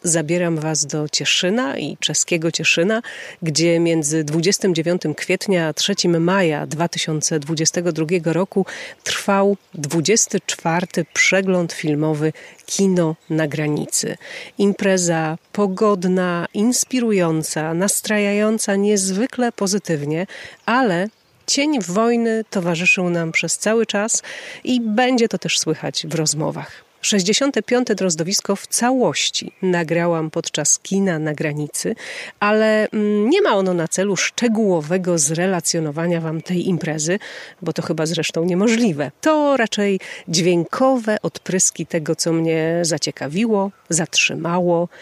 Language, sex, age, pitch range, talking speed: Polish, female, 40-59, 165-210 Hz, 105 wpm